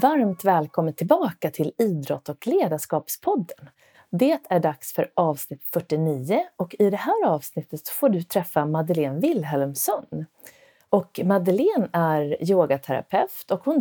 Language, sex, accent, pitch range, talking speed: Swedish, female, native, 155-200 Hz, 120 wpm